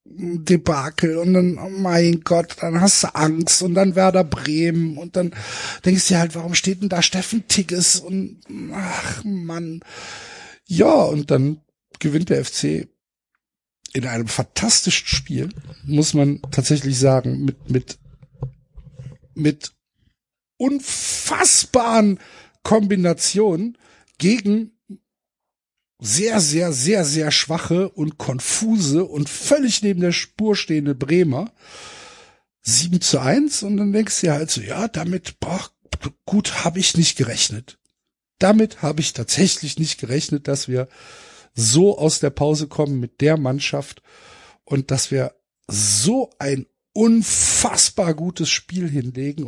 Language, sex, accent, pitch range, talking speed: German, male, German, 140-195 Hz, 130 wpm